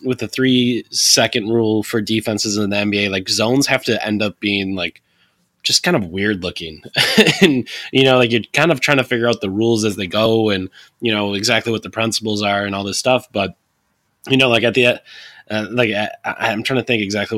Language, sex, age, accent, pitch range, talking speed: English, male, 20-39, American, 100-115 Hz, 220 wpm